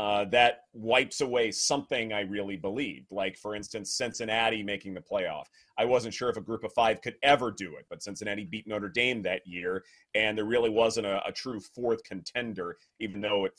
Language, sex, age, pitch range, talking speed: English, male, 30-49, 110-140 Hz, 205 wpm